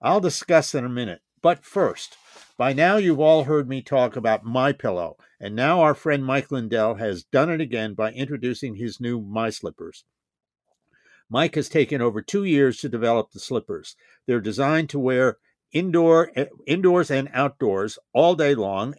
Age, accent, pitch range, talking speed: 50-69, American, 125-160 Hz, 165 wpm